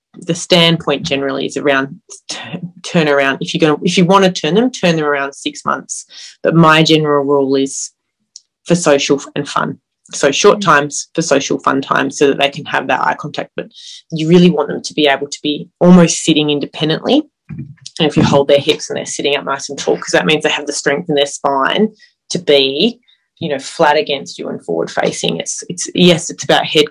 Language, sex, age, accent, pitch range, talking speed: English, female, 30-49, Australian, 145-175 Hz, 220 wpm